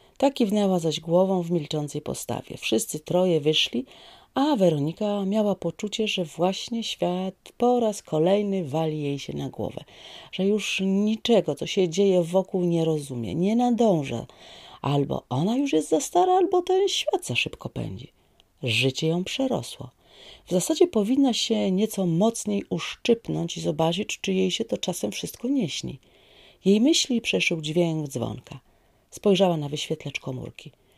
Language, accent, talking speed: Polish, native, 145 wpm